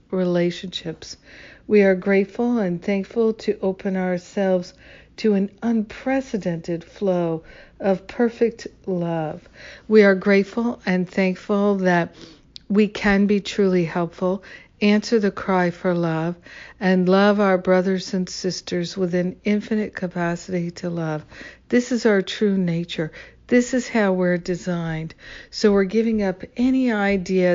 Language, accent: English, American